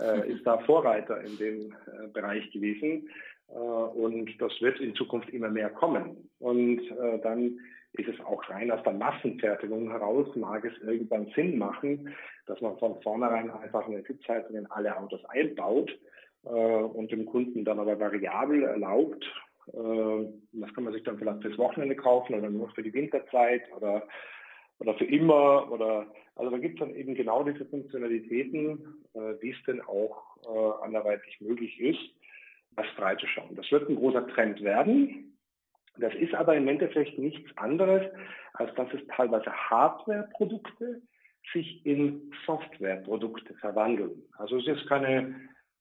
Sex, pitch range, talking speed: male, 110-150 Hz, 150 wpm